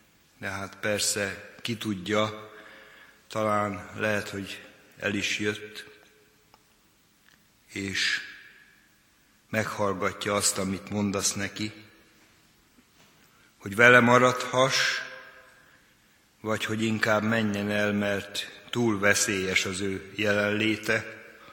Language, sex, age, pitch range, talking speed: Hungarian, male, 60-79, 105-120 Hz, 85 wpm